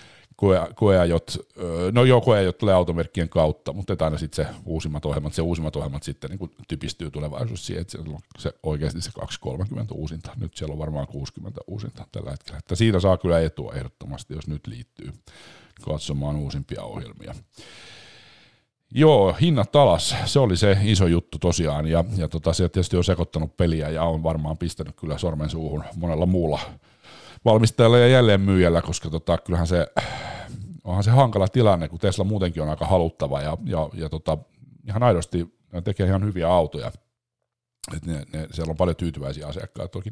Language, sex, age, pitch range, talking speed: Finnish, male, 50-69, 80-100 Hz, 165 wpm